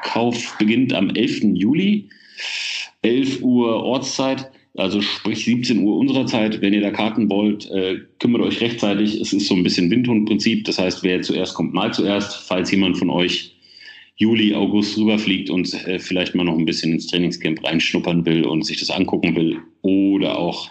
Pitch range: 90-110 Hz